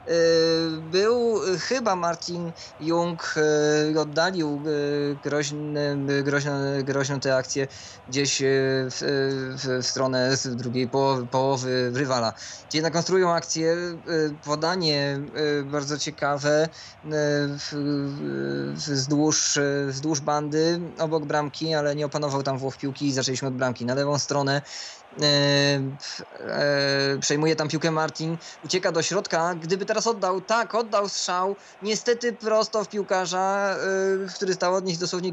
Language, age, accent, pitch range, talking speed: Polish, 20-39, native, 140-165 Hz, 115 wpm